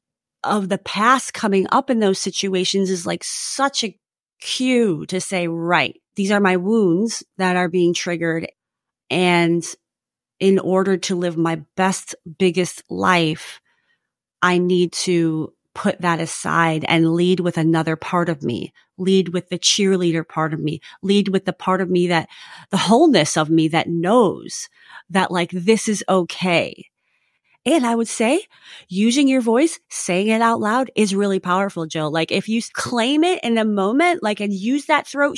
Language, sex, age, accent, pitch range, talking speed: English, female, 30-49, American, 180-260 Hz, 170 wpm